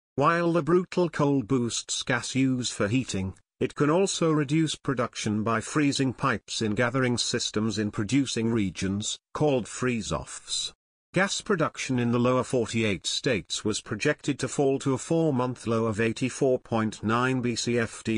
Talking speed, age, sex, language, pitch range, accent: 140 wpm, 50-69, male, English, 105-135 Hz, British